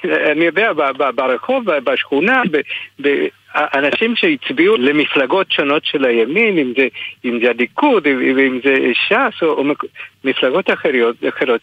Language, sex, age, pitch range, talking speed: Hebrew, male, 60-79, 135-225 Hz, 105 wpm